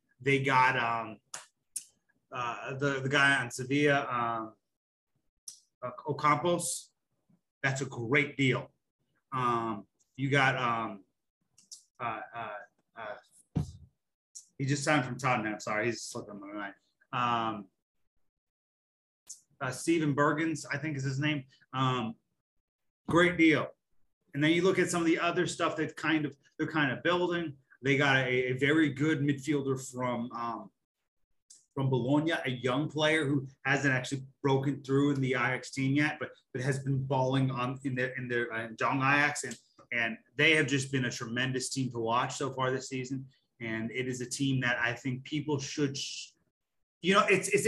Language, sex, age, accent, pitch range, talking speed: English, male, 30-49, American, 125-155 Hz, 160 wpm